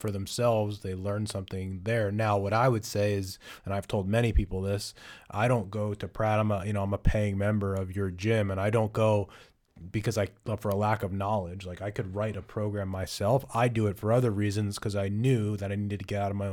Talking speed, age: 250 wpm, 30-49